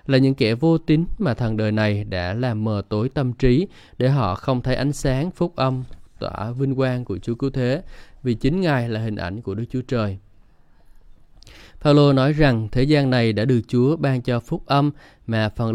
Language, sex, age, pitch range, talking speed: Vietnamese, male, 20-39, 110-140 Hz, 210 wpm